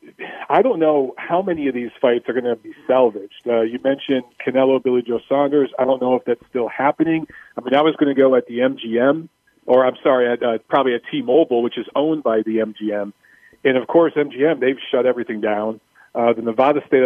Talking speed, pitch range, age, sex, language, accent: 220 wpm, 115-150 Hz, 40-59, male, English, American